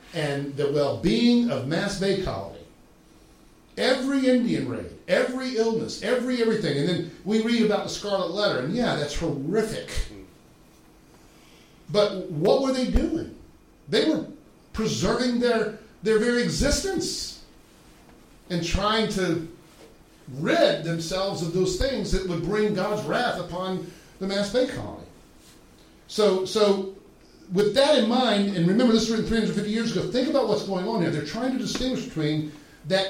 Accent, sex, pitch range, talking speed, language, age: American, male, 175-235 Hz, 150 wpm, English, 50-69